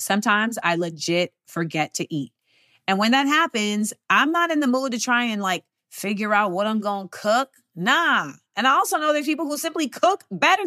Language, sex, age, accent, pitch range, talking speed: English, female, 30-49, American, 215-305 Hz, 210 wpm